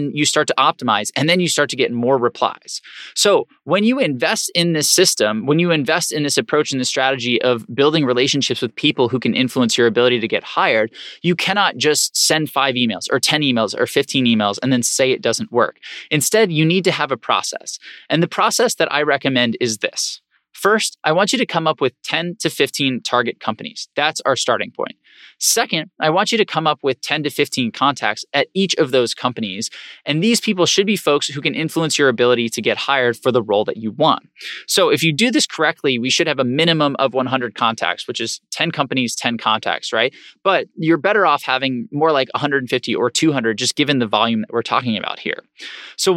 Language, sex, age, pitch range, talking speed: English, male, 20-39, 125-165 Hz, 220 wpm